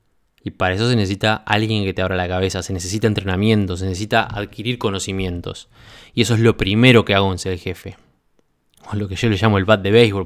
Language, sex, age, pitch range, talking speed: Spanish, male, 20-39, 100-115 Hz, 220 wpm